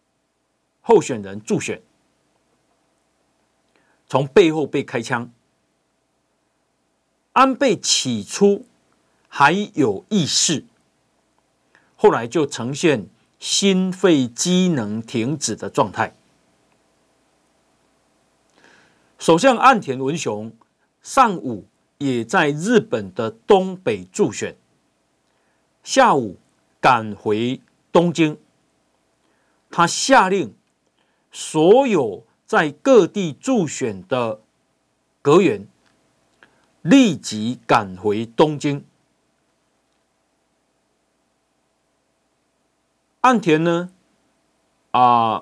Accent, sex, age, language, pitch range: native, male, 50-69, Chinese, 105-175 Hz